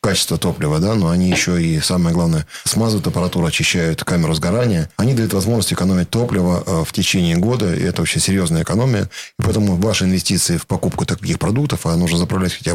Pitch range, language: 85-110 Hz, Russian